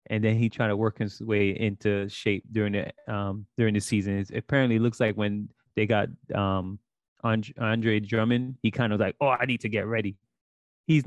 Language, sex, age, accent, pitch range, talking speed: English, male, 30-49, American, 105-125 Hz, 210 wpm